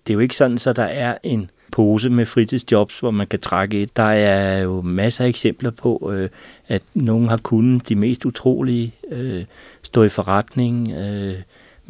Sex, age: male, 60-79